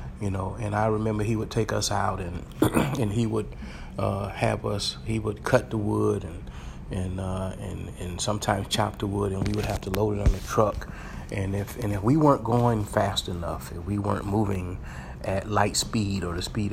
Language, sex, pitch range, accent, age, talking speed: English, male, 90-105 Hz, American, 30-49, 215 wpm